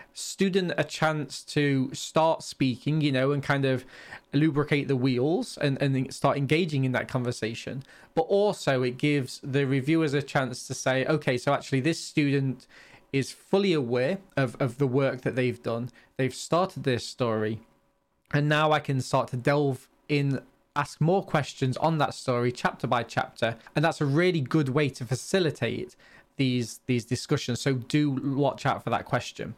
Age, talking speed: 20-39, 170 wpm